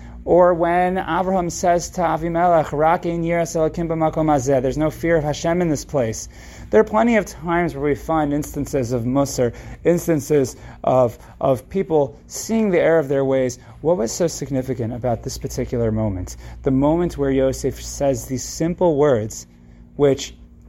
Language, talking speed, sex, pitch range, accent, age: English, 150 wpm, male, 115-160 Hz, American, 30-49